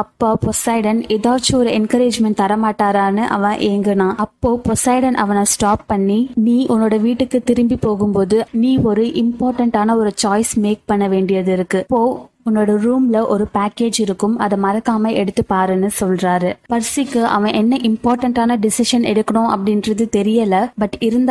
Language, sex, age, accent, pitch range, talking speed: Tamil, female, 20-39, native, 205-230 Hz, 105 wpm